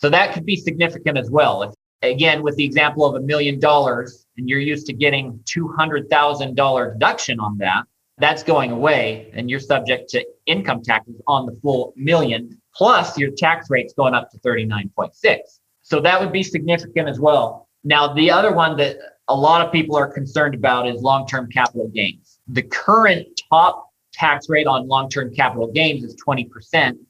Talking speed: 175 wpm